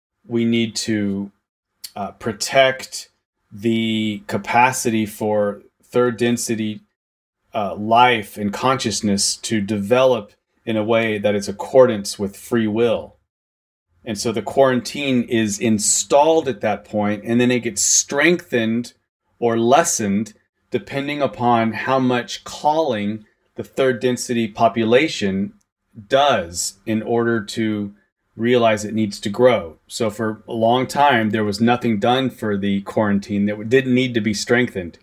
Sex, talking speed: male, 130 wpm